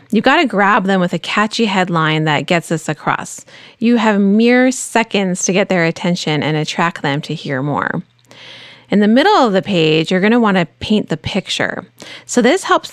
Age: 30-49